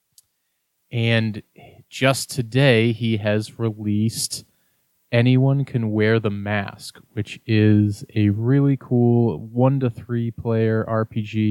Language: English